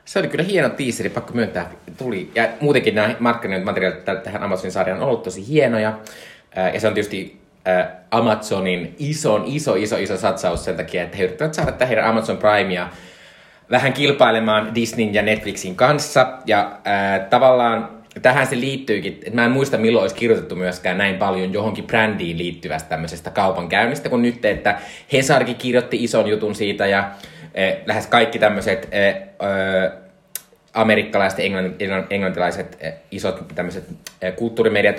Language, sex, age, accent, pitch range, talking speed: Finnish, male, 20-39, native, 95-125 Hz, 150 wpm